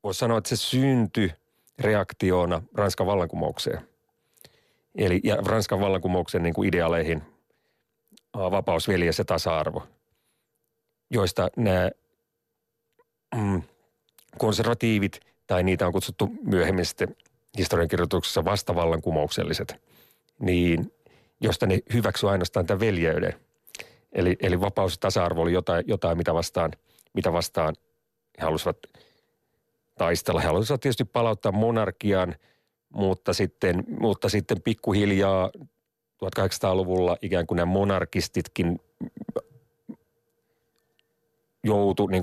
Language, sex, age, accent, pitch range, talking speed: Finnish, male, 40-59, native, 85-115 Hz, 95 wpm